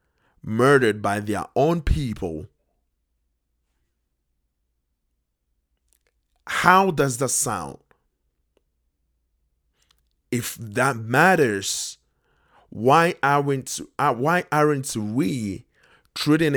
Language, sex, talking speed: English, male, 70 wpm